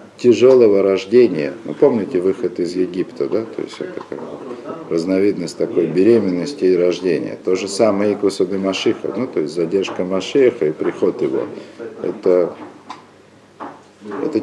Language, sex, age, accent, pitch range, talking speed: Russian, male, 50-69, native, 105-150 Hz, 130 wpm